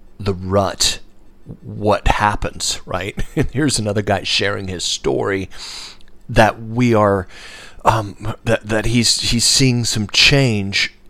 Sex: male